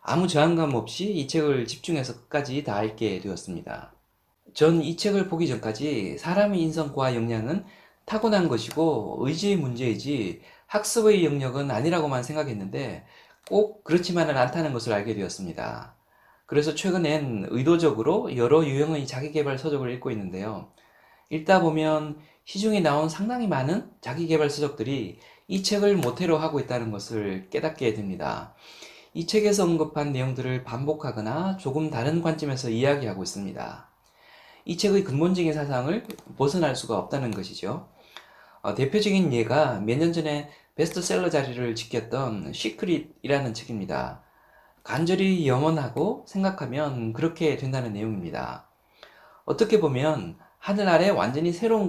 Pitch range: 125-175 Hz